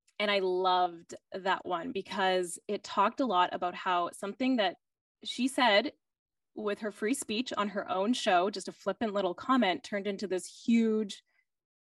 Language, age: English, 10-29